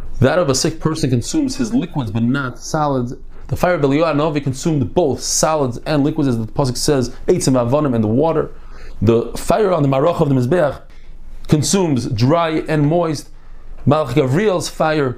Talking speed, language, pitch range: 180 wpm, English, 115-150 Hz